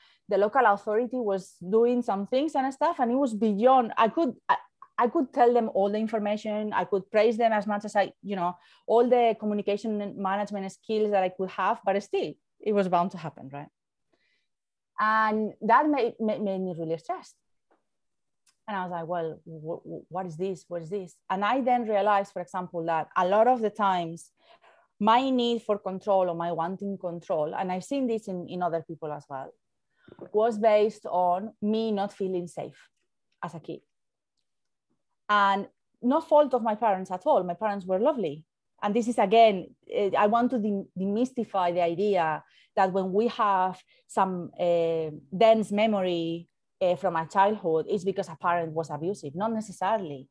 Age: 30-49